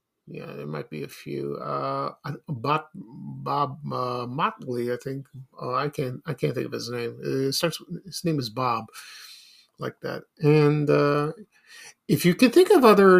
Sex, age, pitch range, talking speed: male, 50-69, 135-180 Hz, 175 wpm